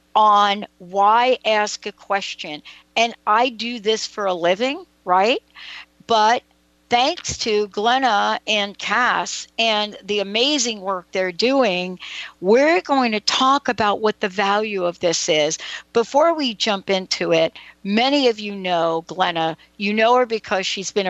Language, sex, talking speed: English, female, 150 wpm